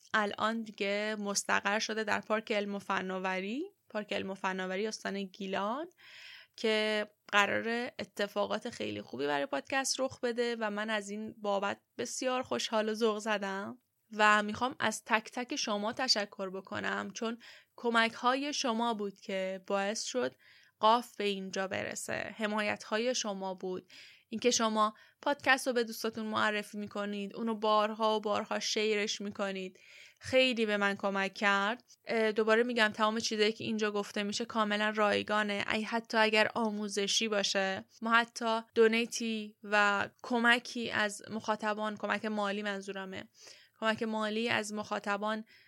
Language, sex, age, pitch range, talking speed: Persian, female, 10-29, 205-230 Hz, 135 wpm